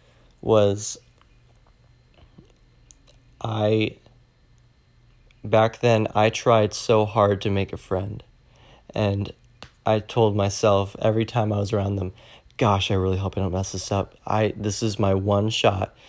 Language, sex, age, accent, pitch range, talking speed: English, male, 20-39, American, 100-120 Hz, 140 wpm